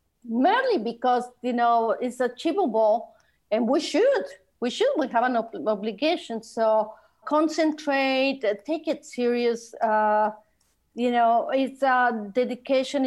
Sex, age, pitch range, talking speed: female, 50-69, 215-260 Hz, 120 wpm